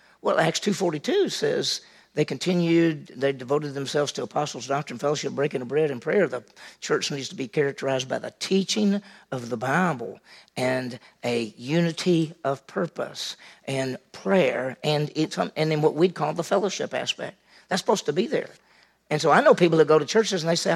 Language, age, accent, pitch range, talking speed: English, 50-69, American, 140-190 Hz, 180 wpm